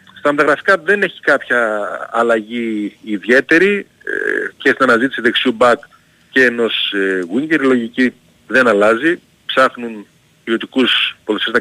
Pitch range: 110-165 Hz